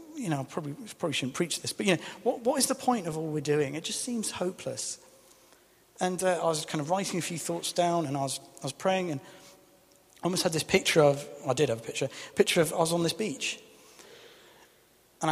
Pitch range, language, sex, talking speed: 135-180 Hz, English, male, 245 wpm